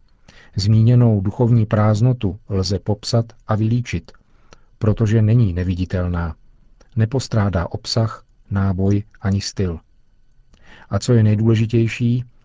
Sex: male